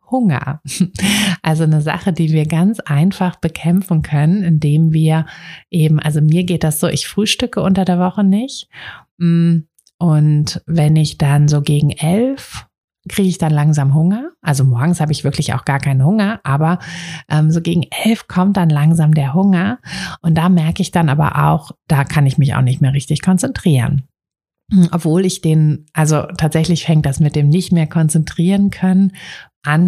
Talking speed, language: 170 wpm, German